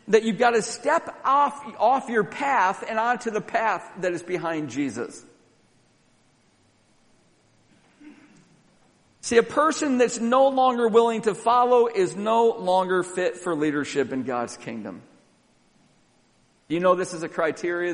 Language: English